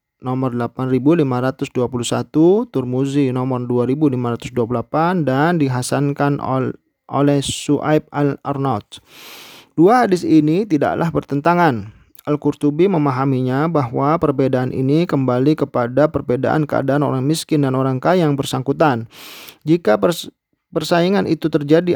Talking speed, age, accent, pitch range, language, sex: 100 wpm, 40-59, native, 130-155 Hz, Indonesian, male